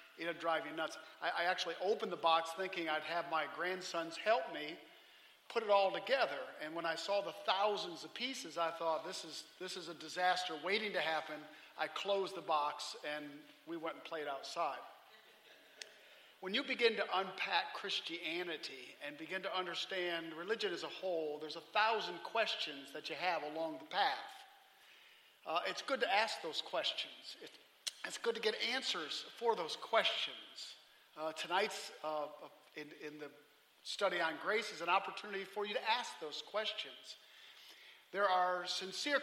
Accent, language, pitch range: American, English, 165-225 Hz